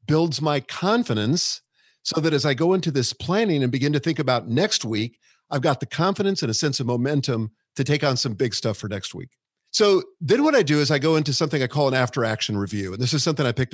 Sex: male